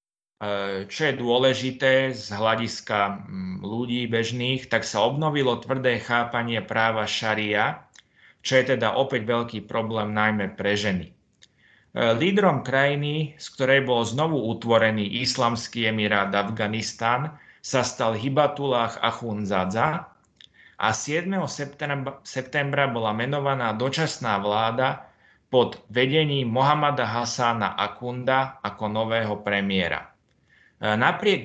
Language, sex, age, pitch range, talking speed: Slovak, male, 30-49, 105-130 Hz, 100 wpm